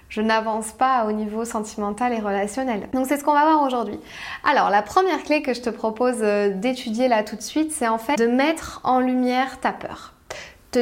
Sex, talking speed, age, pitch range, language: female, 210 wpm, 20-39, 220-260 Hz, French